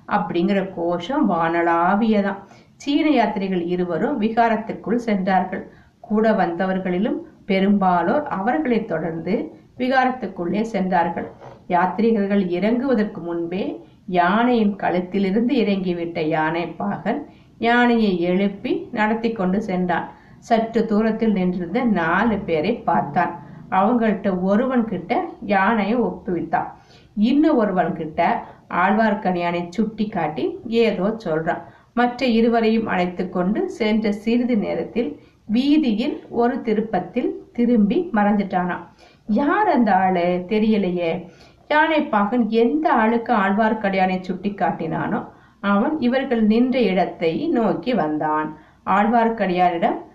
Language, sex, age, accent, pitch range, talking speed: Tamil, female, 50-69, native, 180-230 Hz, 85 wpm